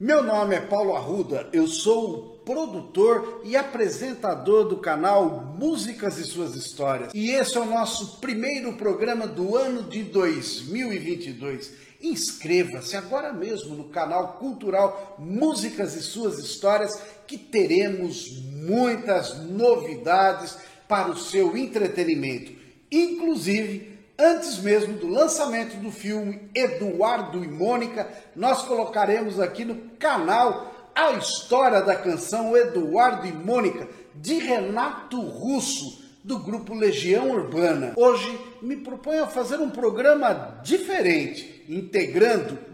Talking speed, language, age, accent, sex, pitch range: 120 wpm, Portuguese, 50-69, Brazilian, male, 195-275 Hz